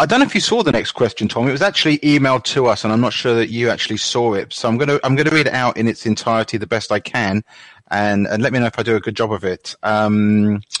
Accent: British